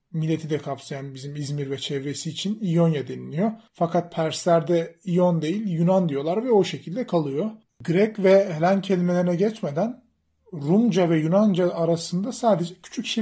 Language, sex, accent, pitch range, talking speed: Turkish, male, native, 155-195 Hz, 145 wpm